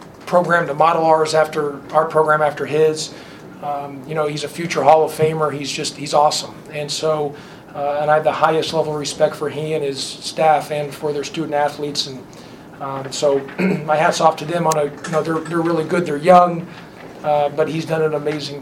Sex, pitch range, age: male, 145-165 Hz, 40-59